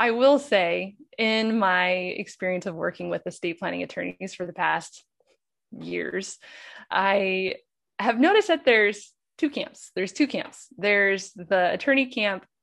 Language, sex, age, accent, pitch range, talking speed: English, female, 20-39, American, 180-240 Hz, 145 wpm